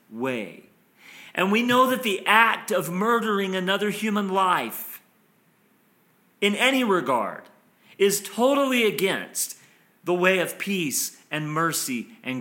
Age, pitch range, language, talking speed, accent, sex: 40-59, 175-225 Hz, English, 120 wpm, American, male